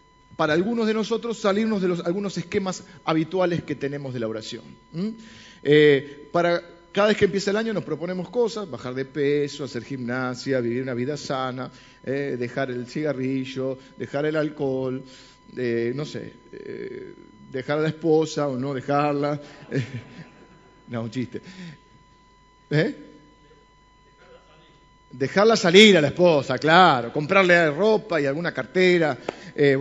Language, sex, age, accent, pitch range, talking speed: Spanish, male, 40-59, Argentinian, 145-200 Hz, 135 wpm